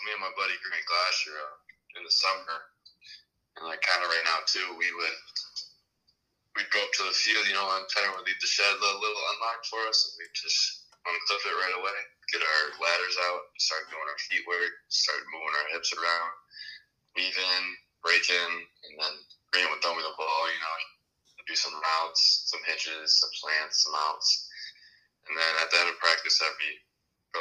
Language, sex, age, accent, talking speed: English, male, 20-39, American, 200 wpm